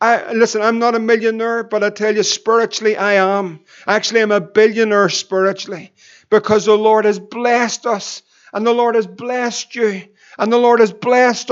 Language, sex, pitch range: English, male, 210-235 Hz